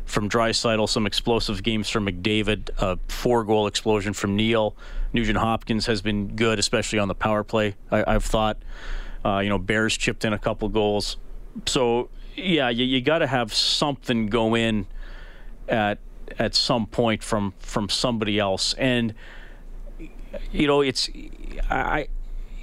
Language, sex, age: English, male, 40-59